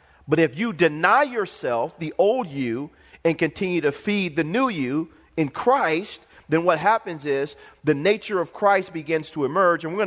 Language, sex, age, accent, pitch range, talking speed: English, male, 40-59, American, 160-215 Hz, 180 wpm